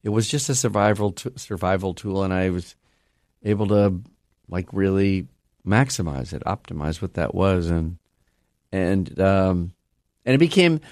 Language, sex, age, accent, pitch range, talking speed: English, male, 50-69, American, 95-120 Hz, 150 wpm